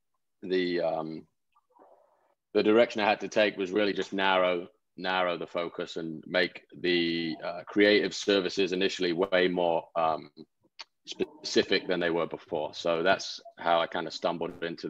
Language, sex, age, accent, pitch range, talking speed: Hindi, male, 20-39, British, 85-100 Hz, 155 wpm